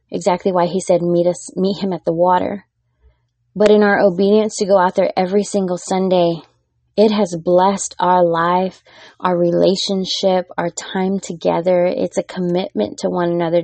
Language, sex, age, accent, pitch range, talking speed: English, female, 20-39, American, 155-195 Hz, 165 wpm